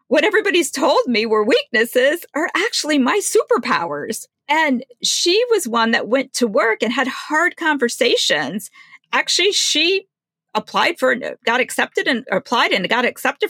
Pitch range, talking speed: 220-330 Hz, 145 wpm